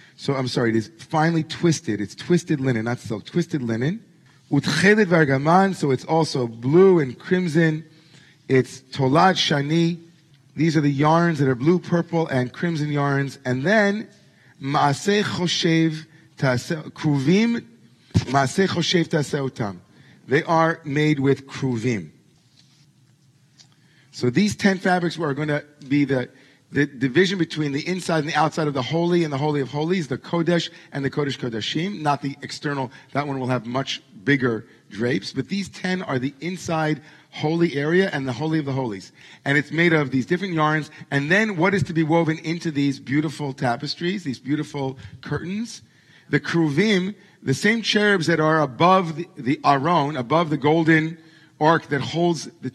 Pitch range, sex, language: 135-170 Hz, male, English